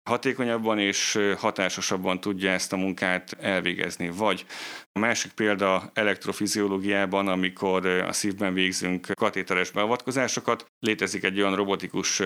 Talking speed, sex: 115 wpm, male